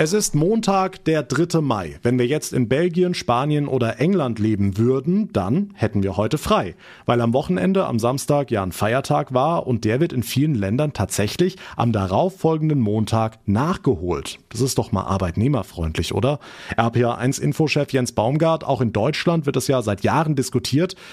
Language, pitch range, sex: German, 115-145 Hz, male